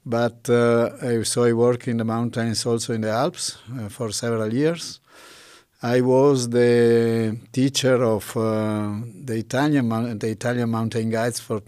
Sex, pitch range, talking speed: male, 110-120 Hz, 155 wpm